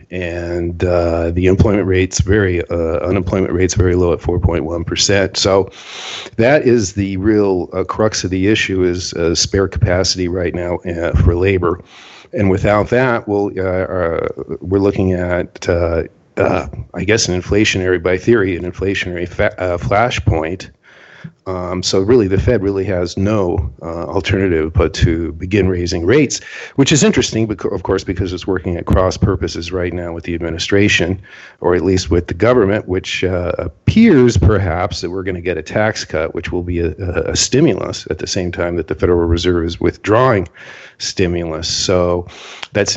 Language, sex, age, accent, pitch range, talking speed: English, male, 50-69, American, 85-100 Hz, 170 wpm